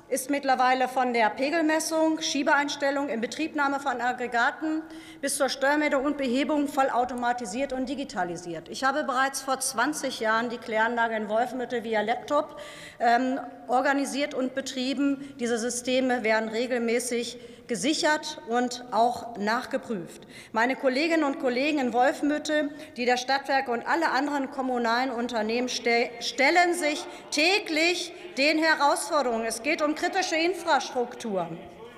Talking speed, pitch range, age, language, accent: 125 wpm, 245-305 Hz, 40-59, German, German